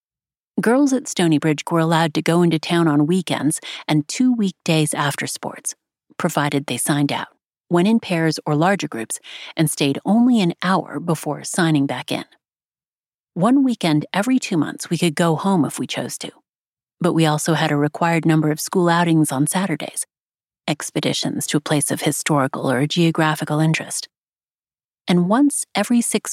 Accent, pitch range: American, 150-185 Hz